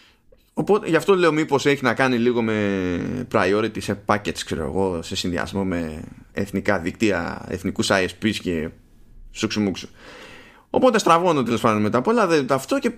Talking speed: 155 wpm